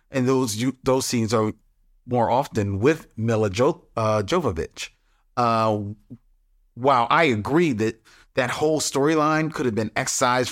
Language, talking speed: English, 145 wpm